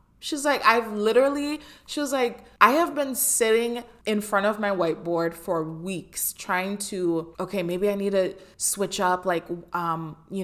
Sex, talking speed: female, 170 wpm